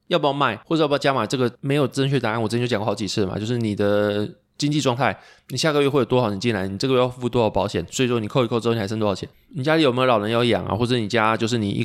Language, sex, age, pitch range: Chinese, male, 20-39, 100-125 Hz